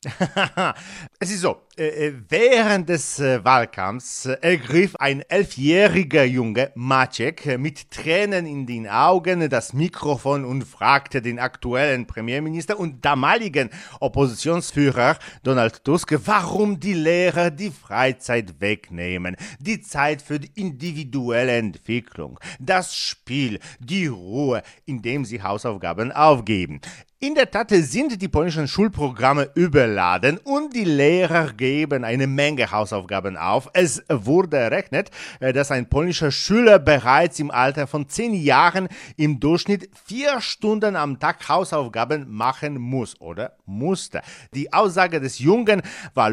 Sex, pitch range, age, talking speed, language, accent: male, 130-180 Hz, 40-59, 120 wpm, German, German